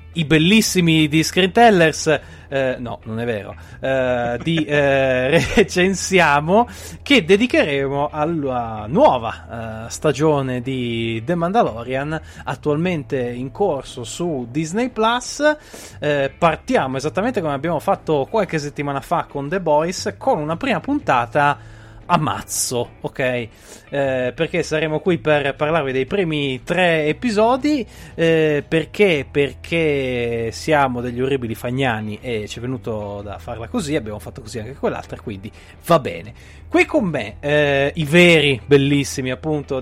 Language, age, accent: Italian, 30-49, native